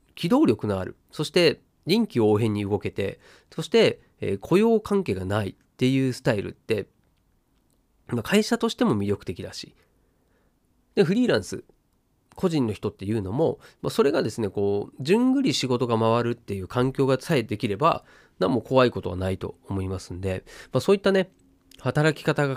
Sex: male